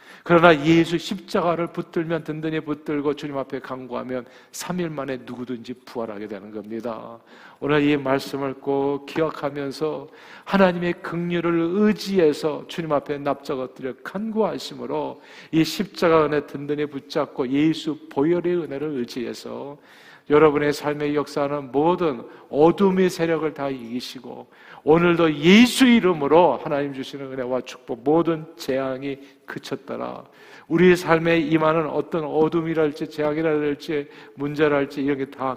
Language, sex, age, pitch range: Korean, male, 40-59, 135-170 Hz